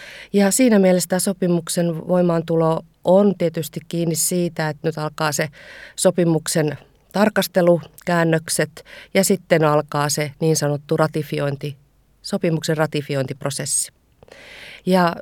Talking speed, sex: 105 wpm, female